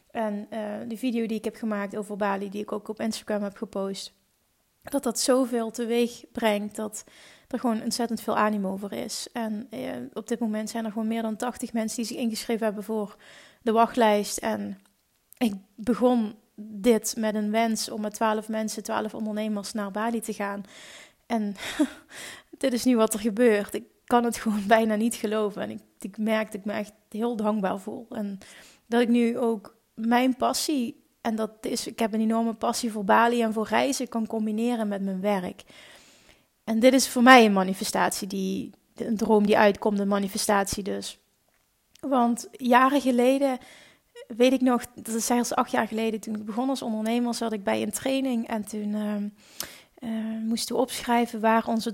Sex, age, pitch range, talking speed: female, 20-39, 210-240 Hz, 185 wpm